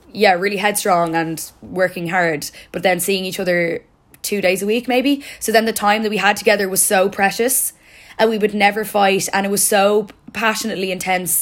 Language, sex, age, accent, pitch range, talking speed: English, female, 10-29, Irish, 185-215 Hz, 200 wpm